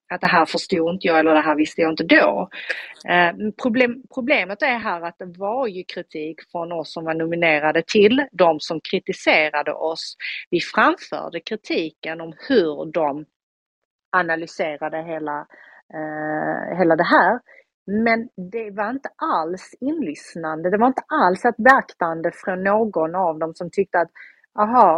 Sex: female